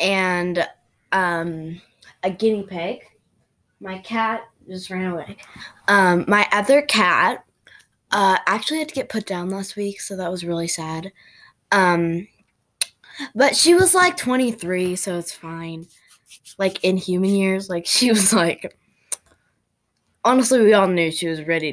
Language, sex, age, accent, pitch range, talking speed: English, female, 20-39, American, 175-220 Hz, 145 wpm